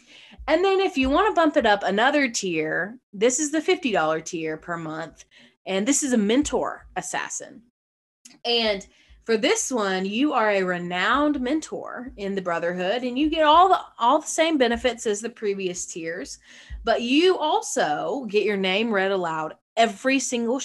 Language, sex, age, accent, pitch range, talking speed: English, female, 30-49, American, 185-280 Hz, 170 wpm